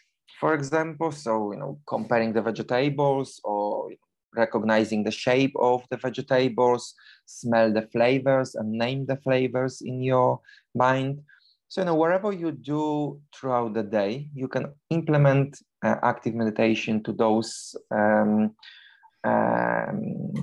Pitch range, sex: 115-145 Hz, male